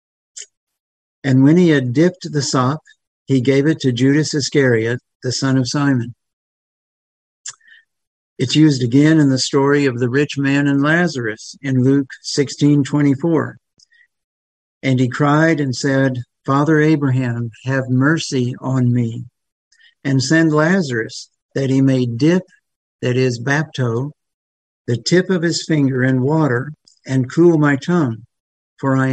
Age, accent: 60-79, American